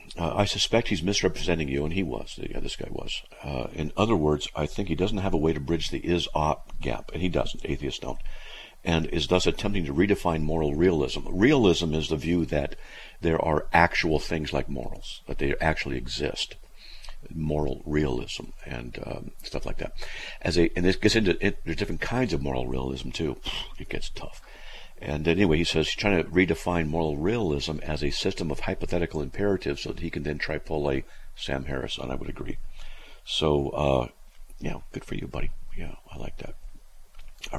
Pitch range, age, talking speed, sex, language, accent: 75-90 Hz, 50-69, 195 wpm, male, English, American